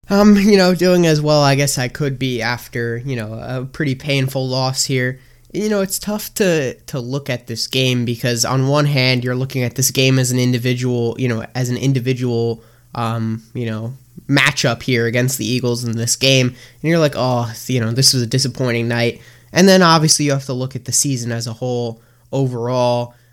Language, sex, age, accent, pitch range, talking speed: English, male, 10-29, American, 120-140 Hz, 215 wpm